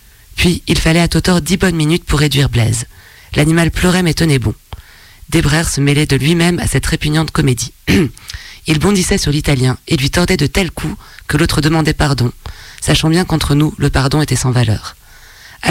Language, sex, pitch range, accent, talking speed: French, female, 130-170 Hz, French, 185 wpm